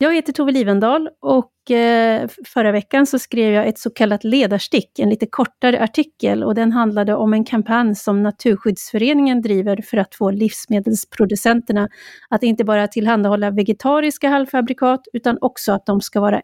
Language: Swedish